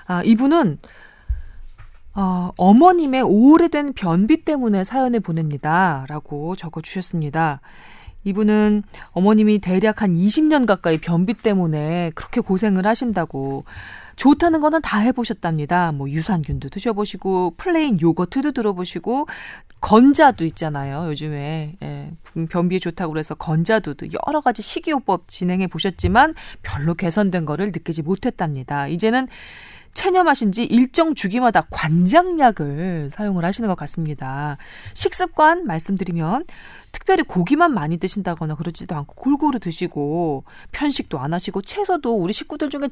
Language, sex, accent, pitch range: Korean, female, native, 160-245 Hz